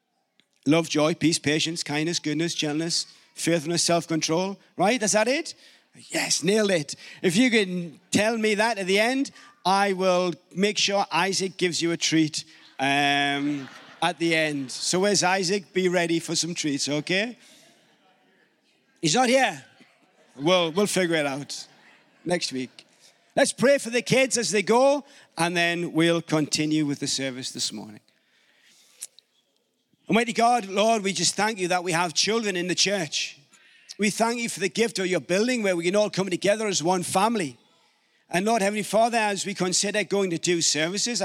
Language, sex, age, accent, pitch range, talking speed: English, male, 40-59, British, 160-210 Hz, 170 wpm